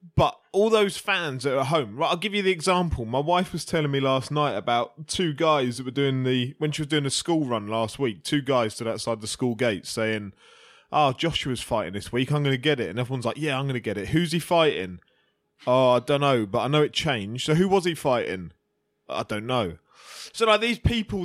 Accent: British